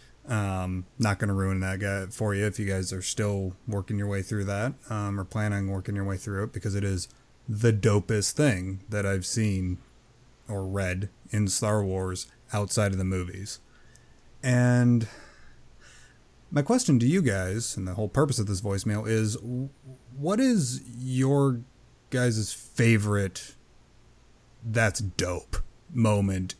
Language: English